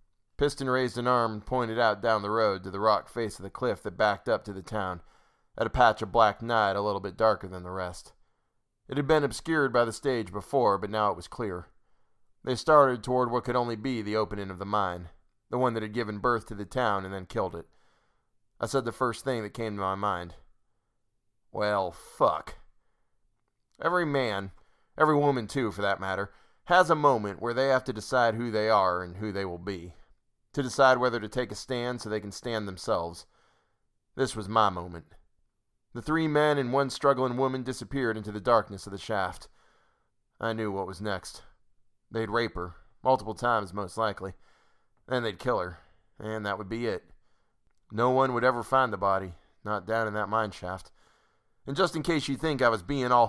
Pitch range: 100-125 Hz